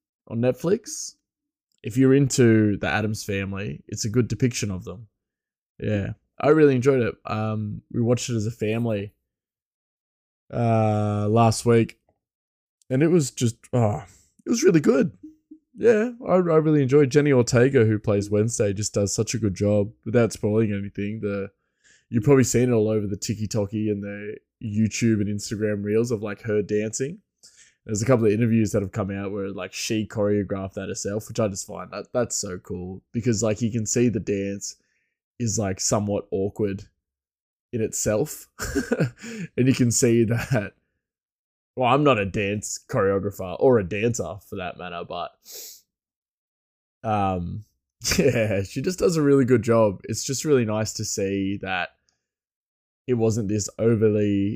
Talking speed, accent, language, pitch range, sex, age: 165 wpm, Australian, English, 100-120 Hz, male, 20-39